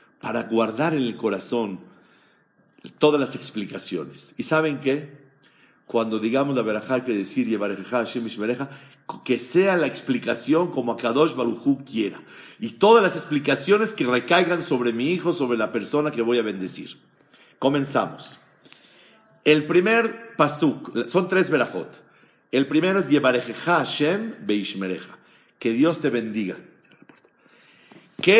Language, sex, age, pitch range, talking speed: Spanish, male, 50-69, 115-165 Hz, 125 wpm